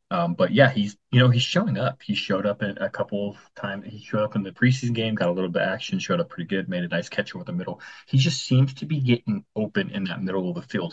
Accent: American